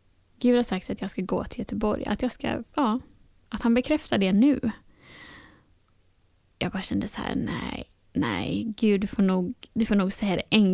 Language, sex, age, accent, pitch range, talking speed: Swedish, female, 10-29, native, 190-240 Hz, 190 wpm